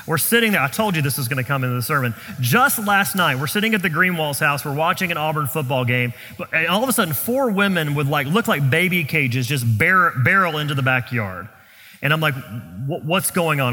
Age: 30-49